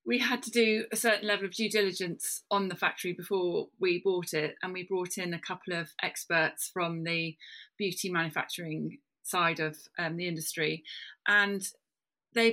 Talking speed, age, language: 170 wpm, 30-49, English